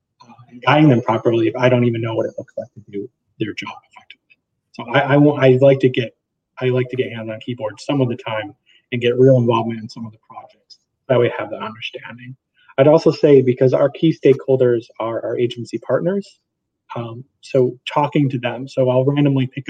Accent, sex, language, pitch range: American, male, English, 120-140 Hz